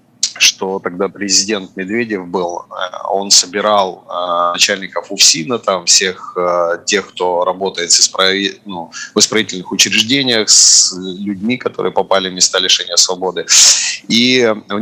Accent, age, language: native, 30-49, Russian